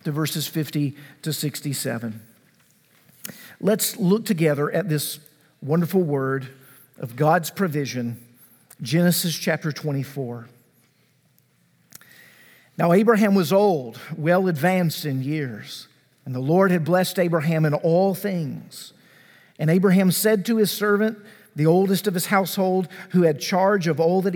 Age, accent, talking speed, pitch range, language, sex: 50-69, American, 125 wpm, 145-190 Hz, English, male